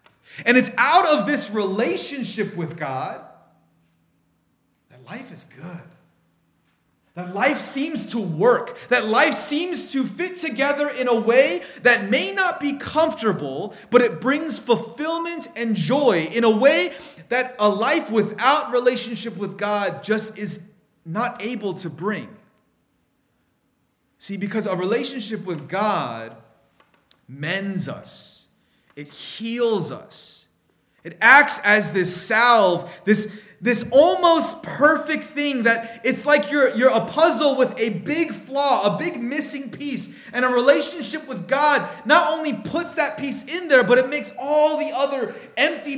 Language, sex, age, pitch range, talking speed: English, male, 30-49, 210-290 Hz, 140 wpm